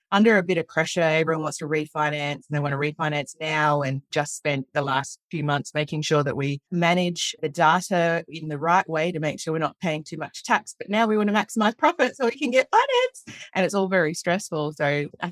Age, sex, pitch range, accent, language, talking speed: 30-49, female, 150-185 Hz, Australian, English, 240 wpm